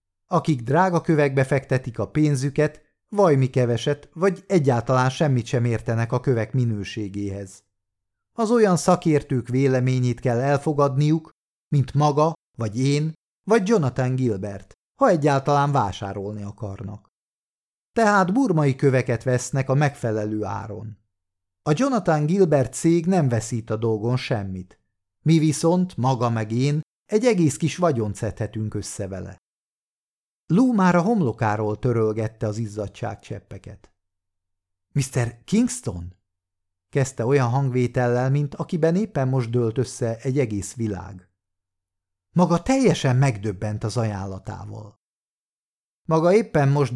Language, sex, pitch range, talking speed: Hungarian, male, 105-150 Hz, 120 wpm